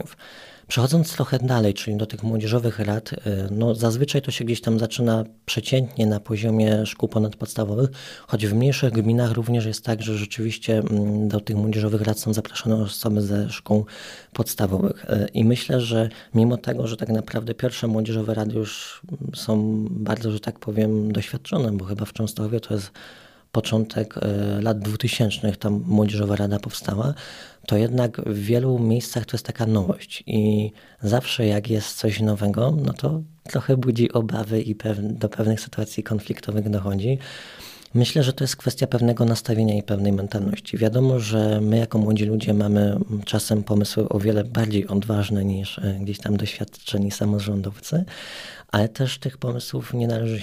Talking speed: 155 wpm